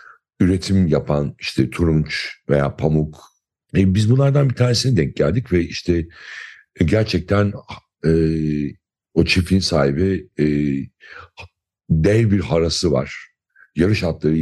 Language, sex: Turkish, male